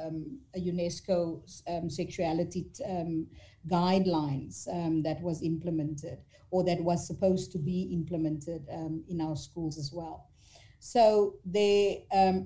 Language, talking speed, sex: English, 130 wpm, female